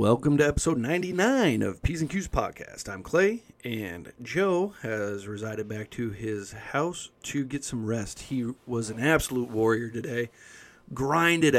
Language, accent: English, American